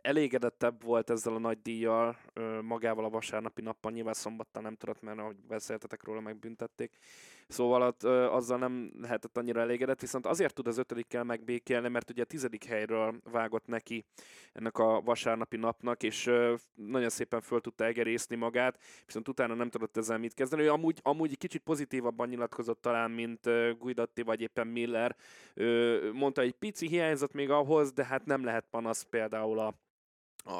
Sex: male